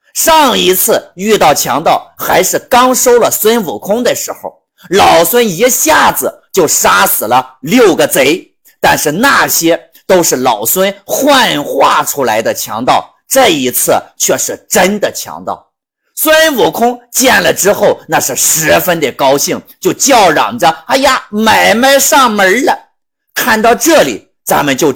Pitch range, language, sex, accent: 195-285 Hz, Chinese, male, native